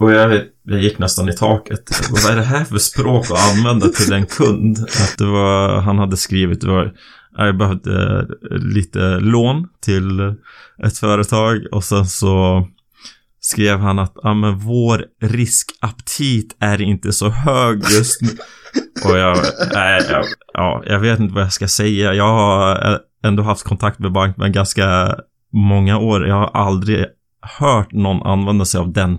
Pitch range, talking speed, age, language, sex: 95-115 Hz, 160 wpm, 20-39, Swedish, male